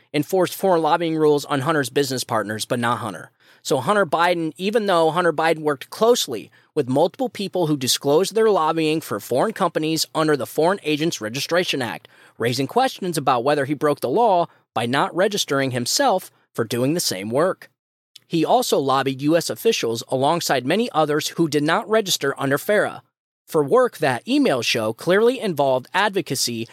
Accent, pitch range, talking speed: American, 135-185 Hz, 170 wpm